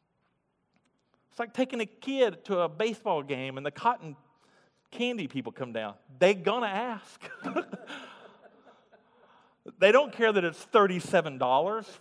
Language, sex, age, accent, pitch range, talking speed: English, male, 40-59, American, 125-170 Hz, 130 wpm